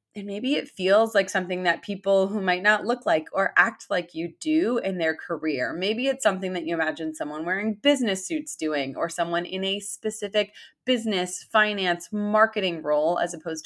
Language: English